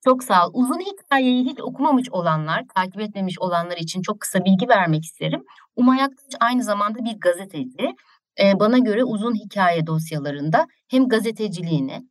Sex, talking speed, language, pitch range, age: female, 155 wpm, Turkish, 170-225 Hz, 60-79